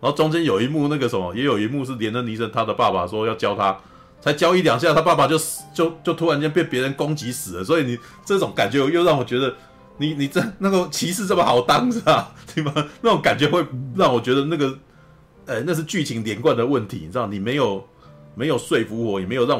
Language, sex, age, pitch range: Chinese, male, 30-49, 115-160 Hz